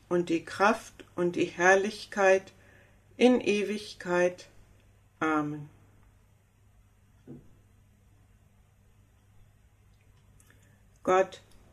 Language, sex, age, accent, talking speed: German, female, 60-79, German, 50 wpm